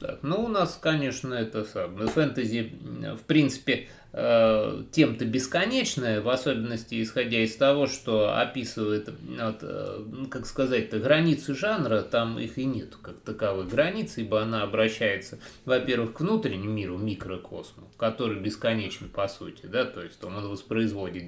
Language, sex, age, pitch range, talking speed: Russian, male, 20-39, 105-140 Hz, 140 wpm